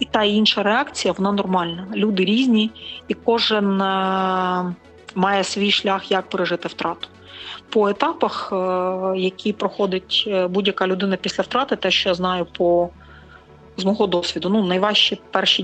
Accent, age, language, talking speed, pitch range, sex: native, 30-49, Ukrainian, 125 wpm, 180-210 Hz, female